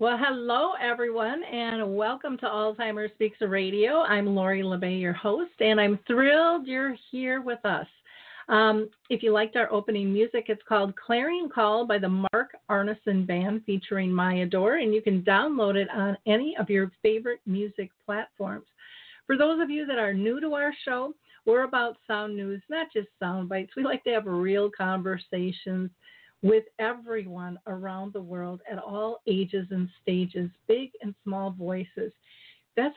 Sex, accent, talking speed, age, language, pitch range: female, American, 165 wpm, 50-69, English, 195-230 Hz